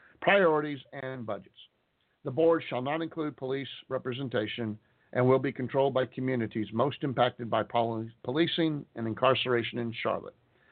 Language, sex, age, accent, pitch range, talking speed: English, male, 50-69, American, 120-160 Hz, 135 wpm